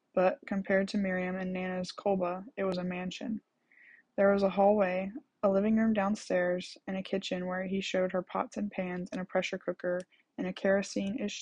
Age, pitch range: 10-29, 180-205 Hz